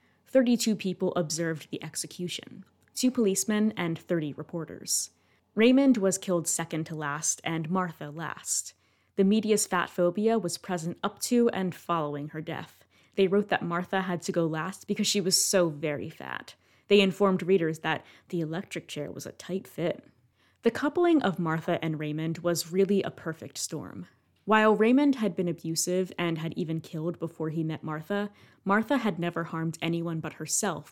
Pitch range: 160-195 Hz